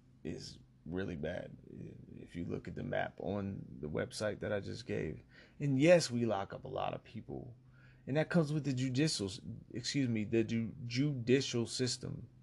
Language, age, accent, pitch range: English, 30-49, American, 115-130 Hz